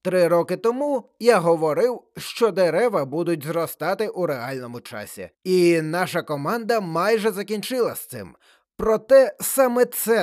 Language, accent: Ukrainian, native